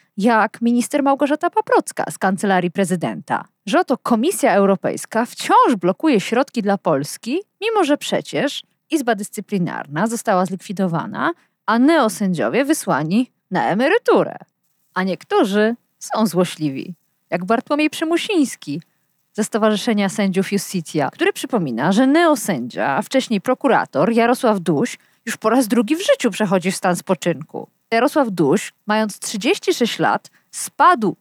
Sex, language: female, Polish